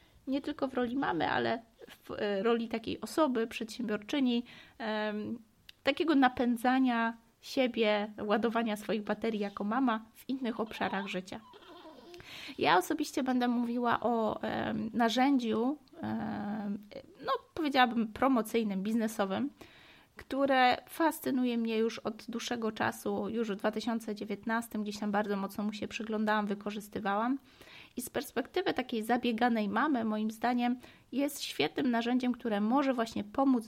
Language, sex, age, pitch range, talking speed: Polish, female, 20-39, 215-260 Hz, 125 wpm